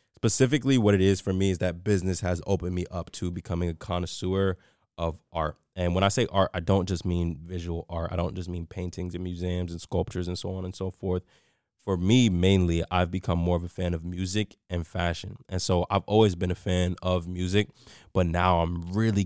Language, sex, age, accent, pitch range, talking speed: English, male, 20-39, American, 90-100 Hz, 220 wpm